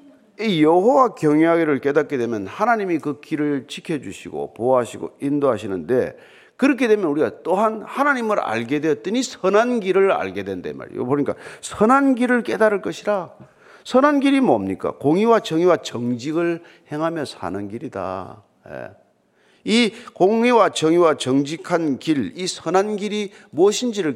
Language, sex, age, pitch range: Korean, male, 40-59, 150-235 Hz